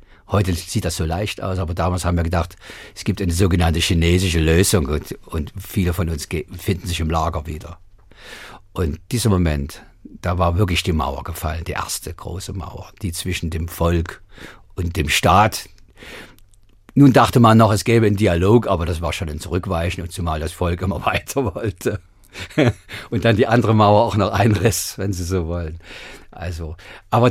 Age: 50-69